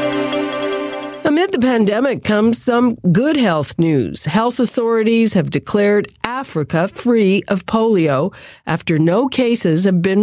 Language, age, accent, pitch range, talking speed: English, 50-69, American, 155-215 Hz, 115 wpm